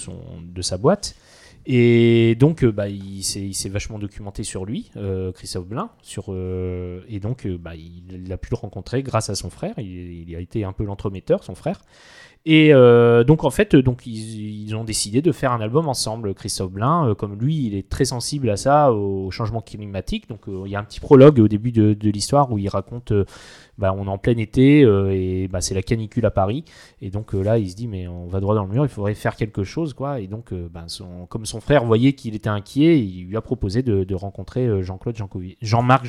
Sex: male